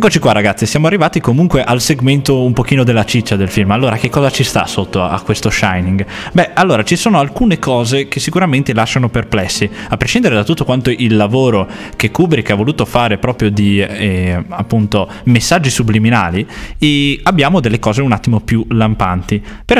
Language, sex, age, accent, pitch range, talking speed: Italian, male, 20-39, native, 105-150 Hz, 180 wpm